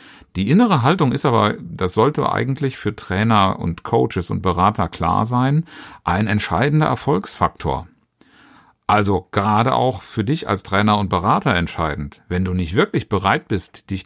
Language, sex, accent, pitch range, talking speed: German, male, German, 90-150 Hz, 155 wpm